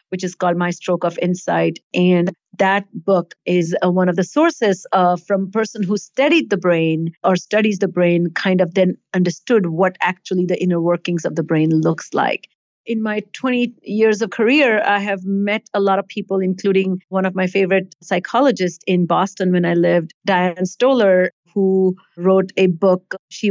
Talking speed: 185 wpm